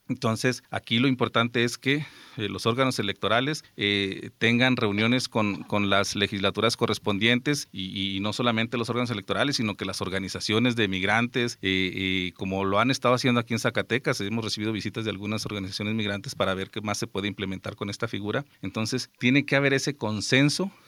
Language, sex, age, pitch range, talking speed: Spanish, male, 40-59, 100-120 Hz, 185 wpm